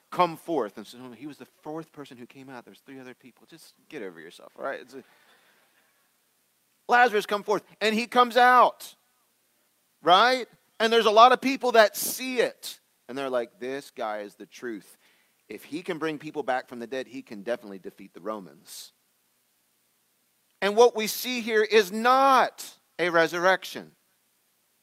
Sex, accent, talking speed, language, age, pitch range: male, American, 165 wpm, English, 40-59, 145-215 Hz